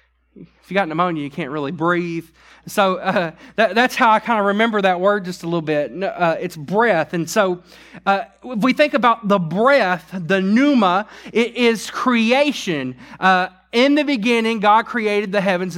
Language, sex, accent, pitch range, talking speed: English, male, American, 160-225 Hz, 185 wpm